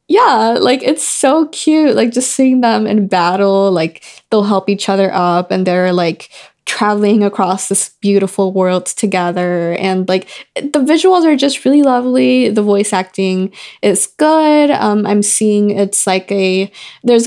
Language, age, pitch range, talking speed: English, 20-39, 190-265 Hz, 160 wpm